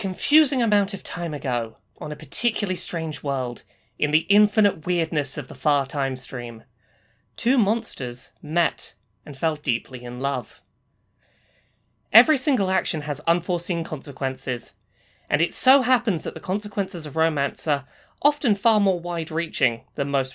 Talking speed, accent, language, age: 145 wpm, British, English, 30-49